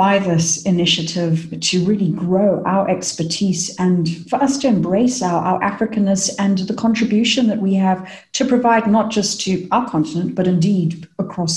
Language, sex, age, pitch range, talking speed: English, female, 50-69, 175-215 Hz, 165 wpm